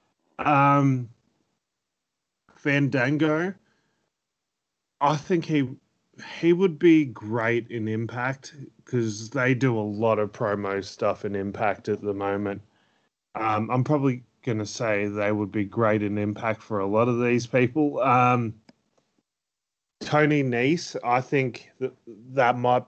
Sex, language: male, English